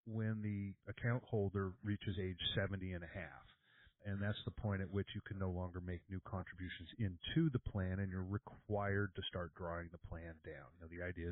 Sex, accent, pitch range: male, American, 90-110 Hz